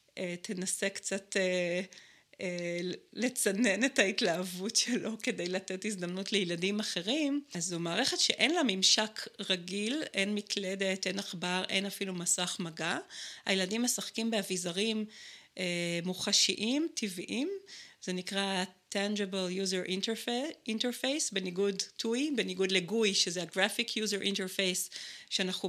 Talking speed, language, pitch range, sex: 115 wpm, Hebrew, 185-230 Hz, female